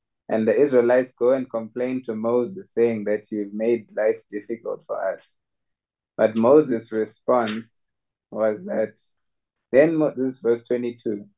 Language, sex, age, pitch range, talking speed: English, male, 20-39, 110-130 Hz, 135 wpm